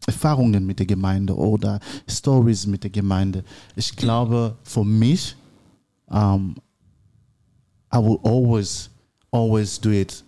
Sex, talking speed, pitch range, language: male, 115 wpm, 100-115 Hz, German